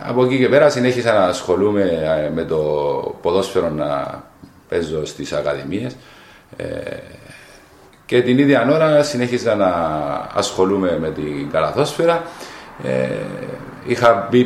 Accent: Spanish